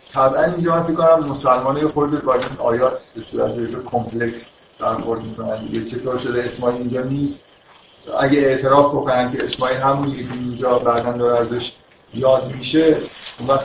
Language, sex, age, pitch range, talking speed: Persian, male, 50-69, 125-145 Hz, 155 wpm